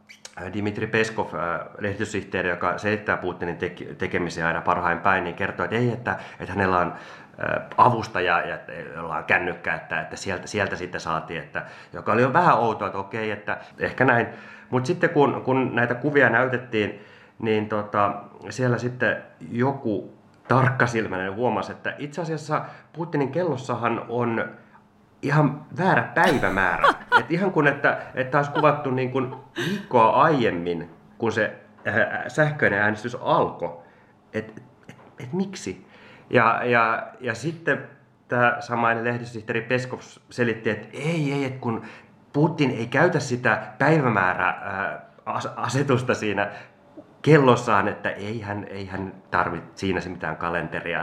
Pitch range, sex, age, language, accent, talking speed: 100-135 Hz, male, 30-49, Finnish, native, 140 wpm